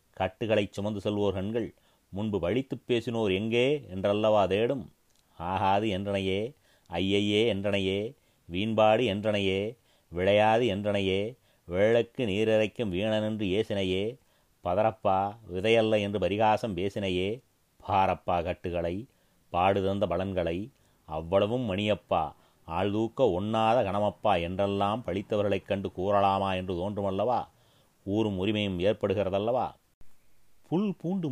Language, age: Tamil, 30-49